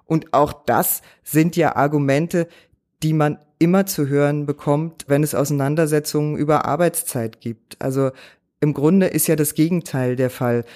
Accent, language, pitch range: German, German, 150-170 Hz